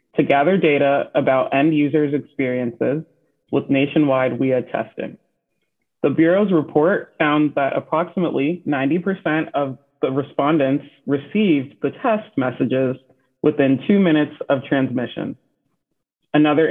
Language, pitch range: English, 135-170 Hz